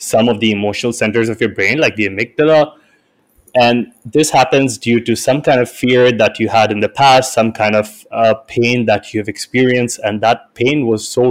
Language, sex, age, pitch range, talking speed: English, male, 20-39, 110-125 Hz, 205 wpm